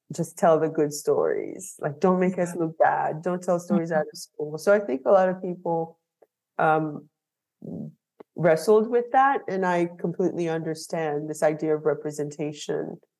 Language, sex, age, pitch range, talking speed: English, female, 30-49, 155-180 Hz, 165 wpm